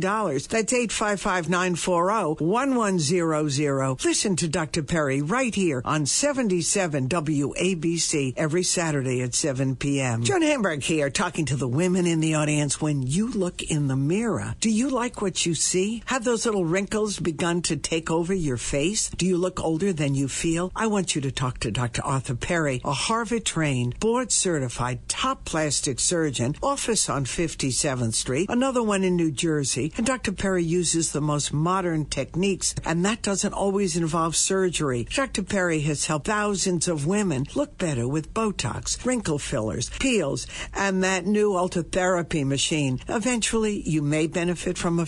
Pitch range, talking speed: 150-195 Hz, 160 wpm